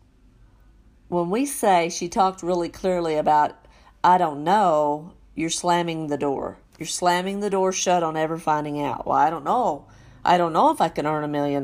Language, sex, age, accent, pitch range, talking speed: English, female, 40-59, American, 145-175 Hz, 190 wpm